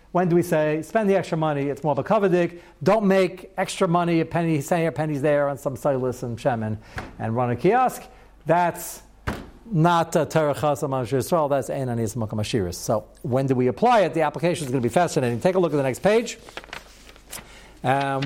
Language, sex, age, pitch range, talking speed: English, male, 60-79, 135-190 Hz, 200 wpm